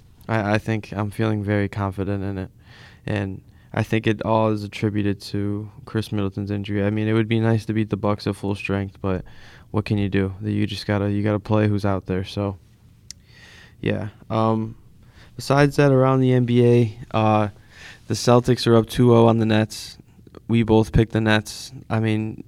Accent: American